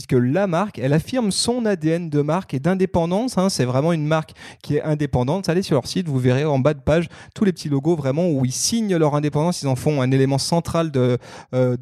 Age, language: 30-49, French